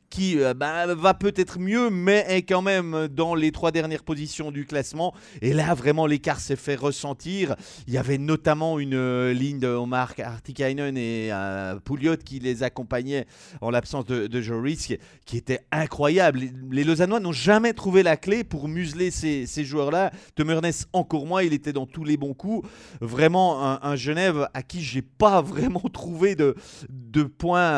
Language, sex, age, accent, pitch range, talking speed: French, male, 30-49, French, 140-190 Hz, 180 wpm